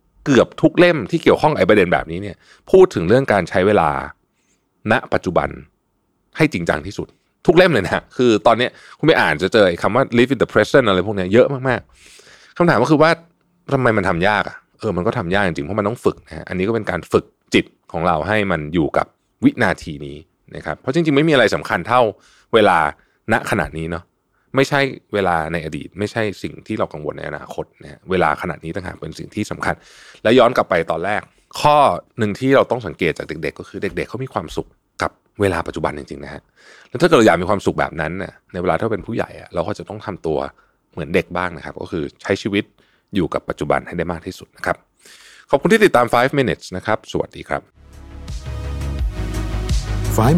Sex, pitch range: male, 85-130 Hz